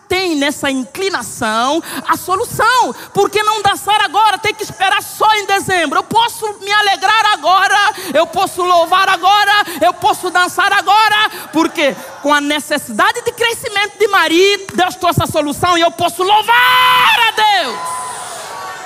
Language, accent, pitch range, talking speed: Portuguese, Brazilian, 285-400 Hz, 145 wpm